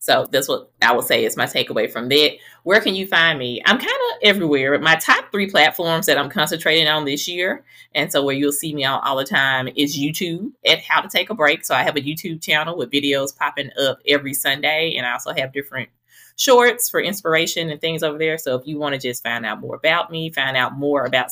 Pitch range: 135-165 Hz